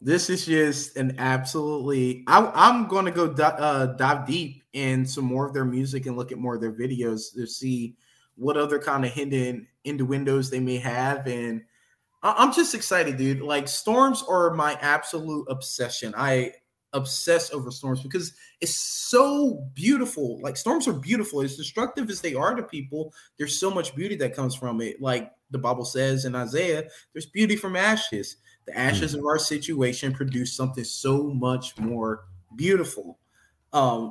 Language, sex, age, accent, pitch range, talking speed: English, male, 20-39, American, 125-165 Hz, 170 wpm